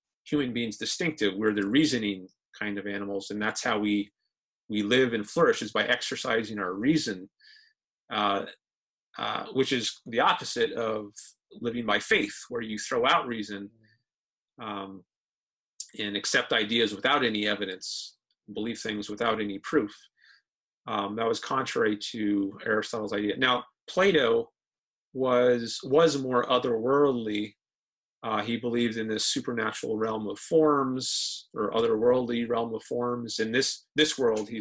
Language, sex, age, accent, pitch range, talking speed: English, male, 30-49, American, 105-135 Hz, 140 wpm